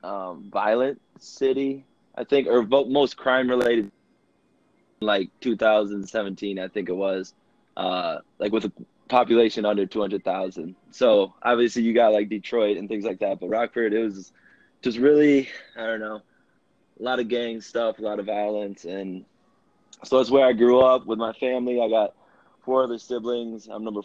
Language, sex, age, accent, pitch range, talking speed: English, male, 20-39, American, 100-125 Hz, 165 wpm